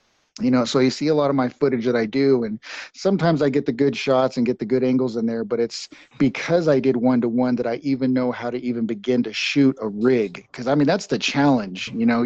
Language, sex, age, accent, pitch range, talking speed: English, male, 30-49, American, 115-135 Hz, 260 wpm